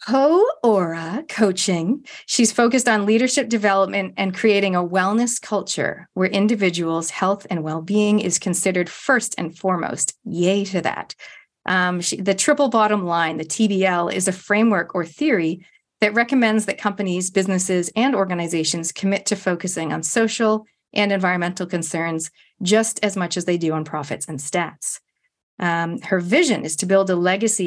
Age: 40-59